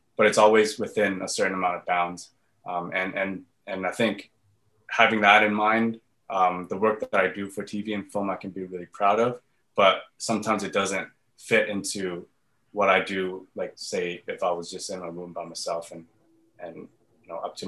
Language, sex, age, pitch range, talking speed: English, male, 20-39, 90-115 Hz, 205 wpm